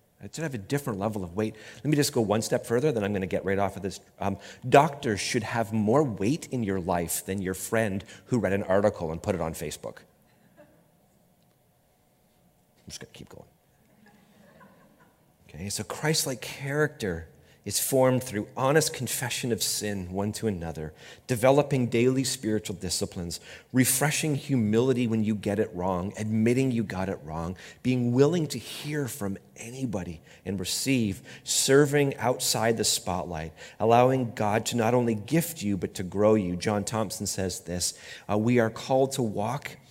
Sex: male